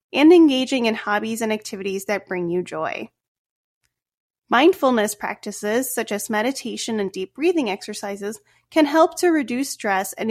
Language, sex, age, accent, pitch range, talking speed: English, female, 20-39, American, 200-275 Hz, 145 wpm